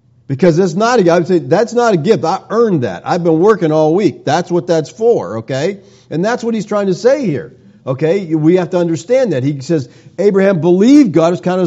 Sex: male